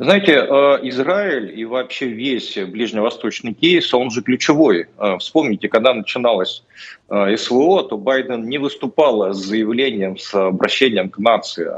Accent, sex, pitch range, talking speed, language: native, male, 105-135 Hz, 120 wpm, Russian